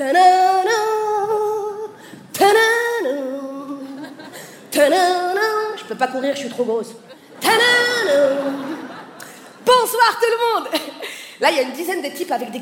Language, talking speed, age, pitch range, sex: French, 125 wpm, 20-39, 275-420 Hz, female